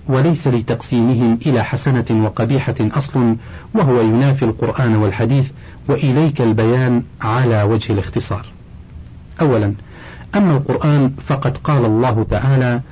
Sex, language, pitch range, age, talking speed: male, Arabic, 110-140 Hz, 50-69, 100 wpm